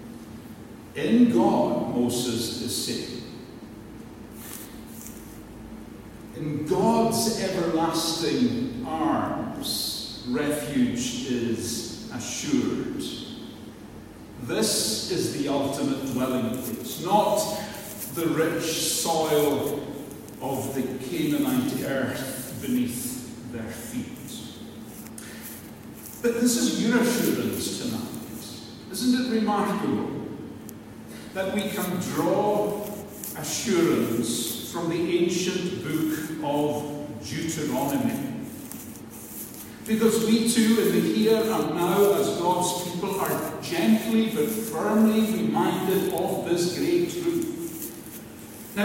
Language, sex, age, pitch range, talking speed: English, male, 60-79, 145-220 Hz, 85 wpm